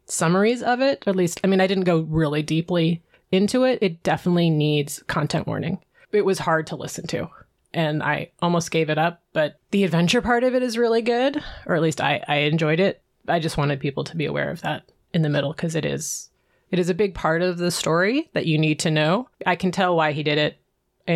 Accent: American